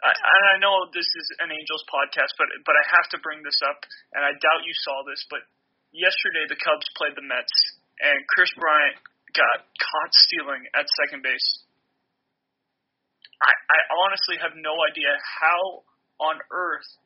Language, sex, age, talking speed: English, male, 20-39, 170 wpm